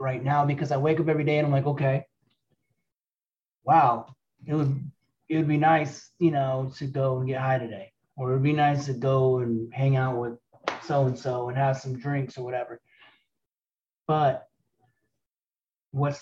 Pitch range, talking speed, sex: 125-155 Hz, 170 wpm, male